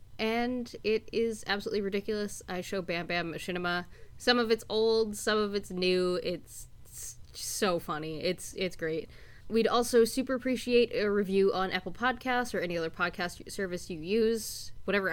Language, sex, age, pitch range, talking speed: English, female, 10-29, 180-245 Hz, 165 wpm